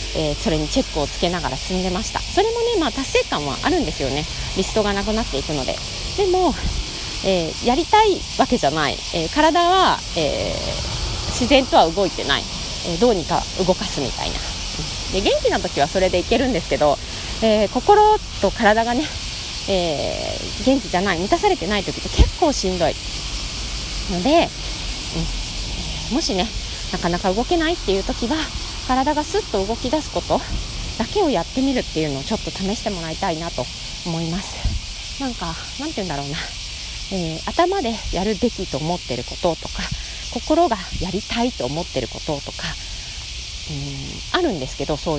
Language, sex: Japanese, female